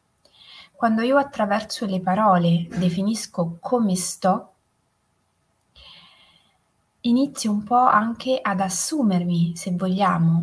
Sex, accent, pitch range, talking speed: female, native, 175-220 Hz, 90 wpm